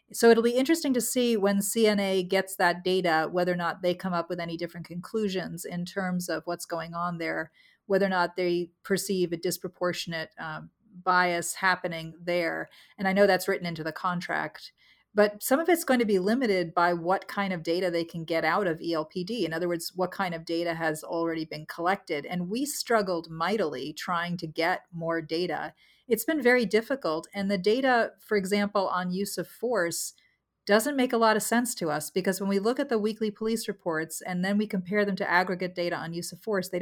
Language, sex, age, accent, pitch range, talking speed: English, female, 40-59, American, 175-210 Hz, 210 wpm